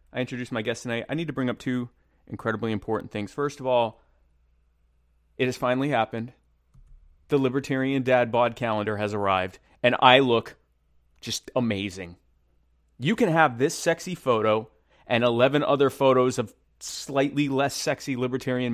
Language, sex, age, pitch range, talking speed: English, male, 30-49, 110-140 Hz, 155 wpm